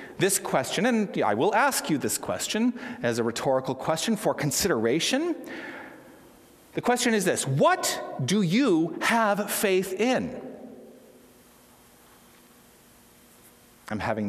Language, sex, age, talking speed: English, male, 40-59, 115 wpm